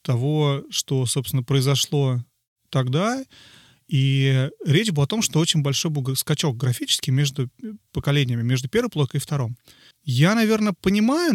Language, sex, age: Russian, male, 30-49